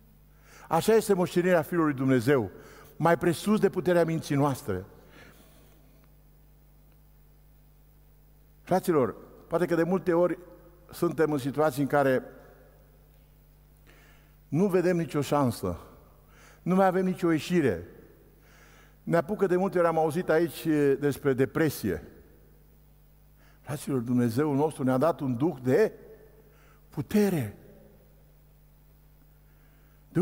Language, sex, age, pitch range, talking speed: Romanian, male, 60-79, 145-200 Hz, 105 wpm